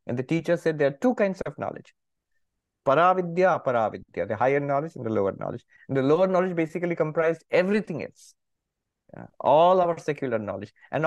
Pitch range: 125-185 Hz